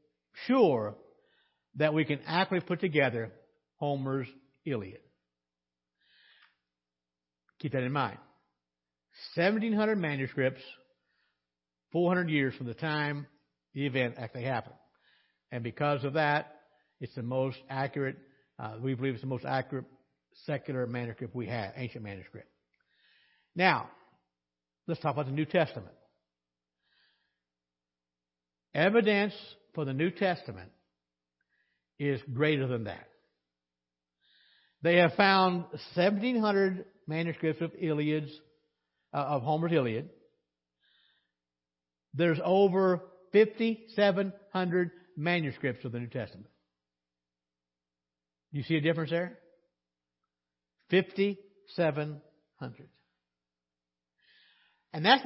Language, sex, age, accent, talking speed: English, male, 60-79, American, 95 wpm